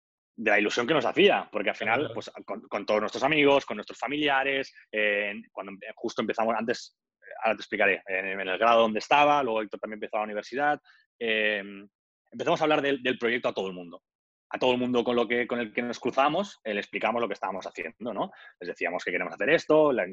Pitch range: 110-140 Hz